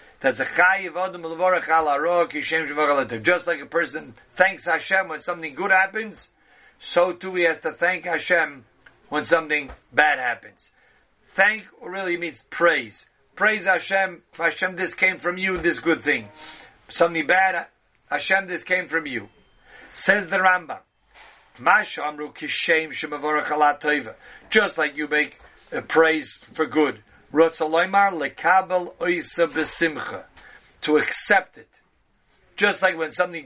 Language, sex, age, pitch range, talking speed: English, male, 50-69, 155-190 Hz, 110 wpm